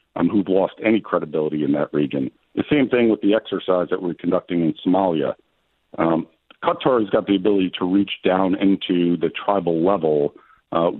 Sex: male